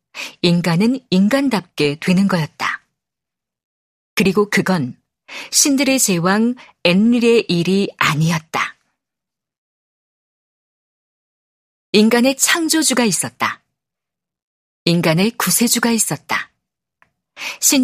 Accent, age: native, 40-59